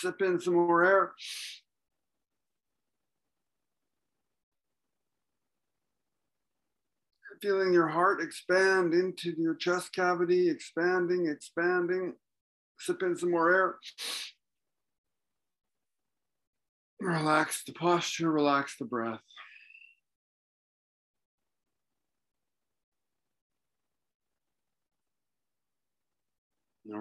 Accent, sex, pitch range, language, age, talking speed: American, male, 115-155 Hz, English, 50-69, 60 wpm